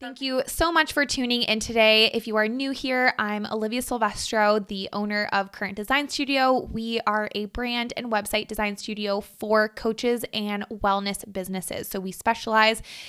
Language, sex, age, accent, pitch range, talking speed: English, female, 20-39, American, 205-235 Hz, 175 wpm